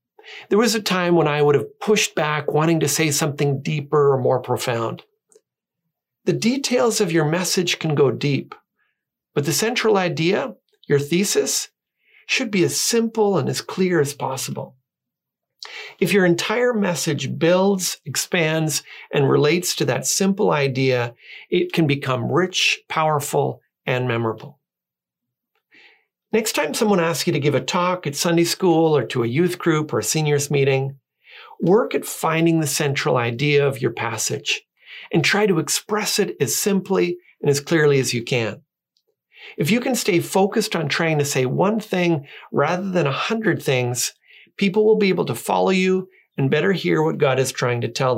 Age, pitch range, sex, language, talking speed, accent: 50-69, 145-195 Hz, male, English, 170 wpm, American